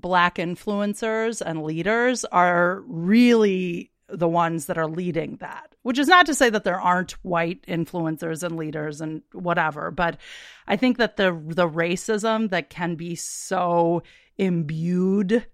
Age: 30-49